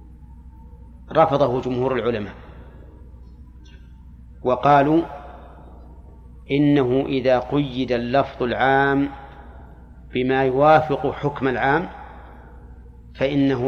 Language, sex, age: Arabic, male, 40-59